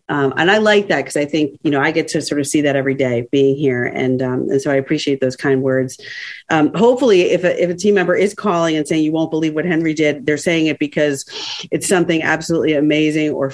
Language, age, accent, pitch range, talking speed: English, 40-59, American, 135-170 Hz, 255 wpm